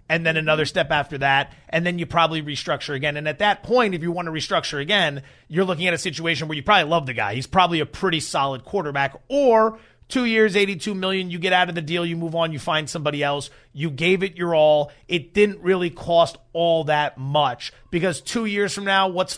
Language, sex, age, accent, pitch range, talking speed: English, male, 30-49, American, 150-215 Hz, 230 wpm